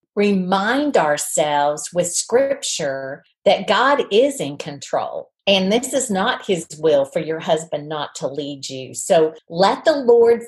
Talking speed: 150 wpm